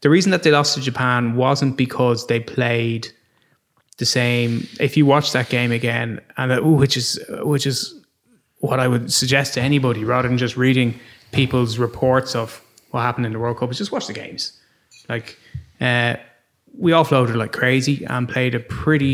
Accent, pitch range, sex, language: Irish, 120-140 Hz, male, English